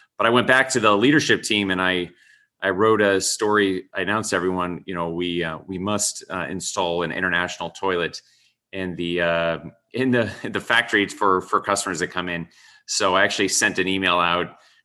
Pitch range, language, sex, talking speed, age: 85-105 Hz, English, male, 200 wpm, 30-49